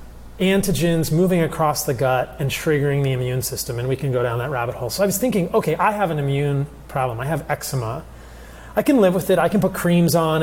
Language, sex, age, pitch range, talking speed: English, male, 30-49, 135-170 Hz, 235 wpm